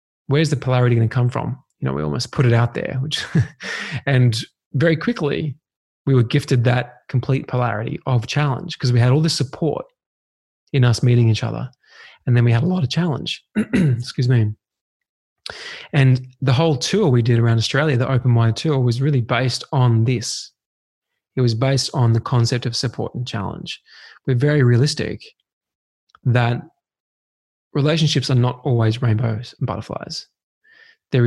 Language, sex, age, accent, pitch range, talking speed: English, male, 20-39, Australian, 120-145 Hz, 165 wpm